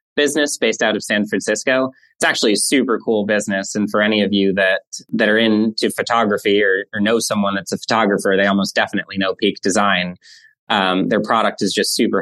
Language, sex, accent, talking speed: English, male, American, 200 wpm